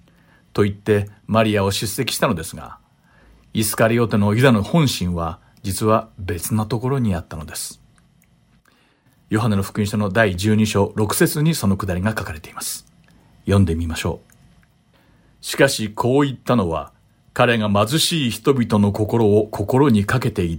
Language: Japanese